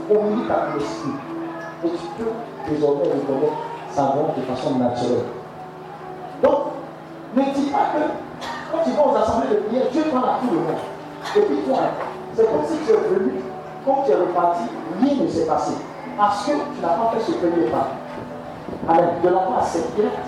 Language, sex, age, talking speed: French, male, 40-59, 190 wpm